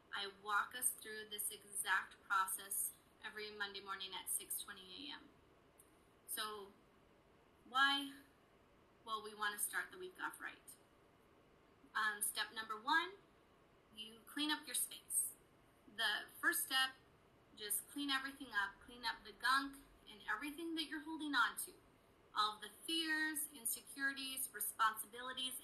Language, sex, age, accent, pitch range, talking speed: English, female, 20-39, American, 215-285 Hz, 135 wpm